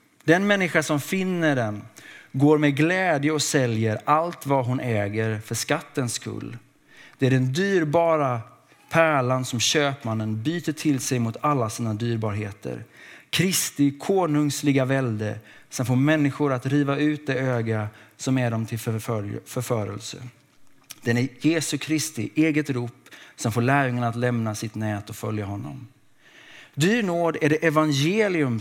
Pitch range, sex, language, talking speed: 120-155 Hz, male, Swedish, 145 wpm